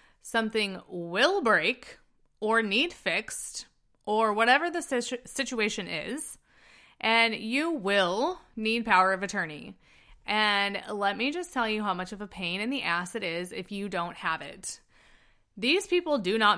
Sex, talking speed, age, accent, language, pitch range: female, 155 wpm, 20-39, American, English, 180-250 Hz